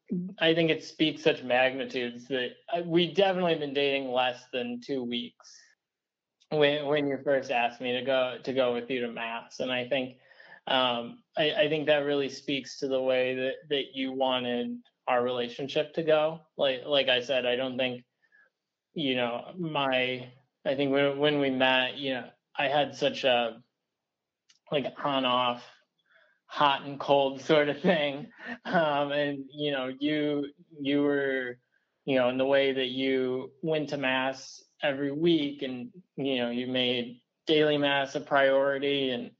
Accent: American